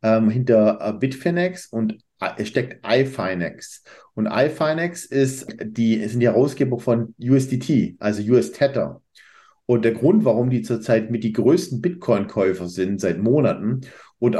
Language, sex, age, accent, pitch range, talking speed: German, male, 50-69, German, 115-140 Hz, 135 wpm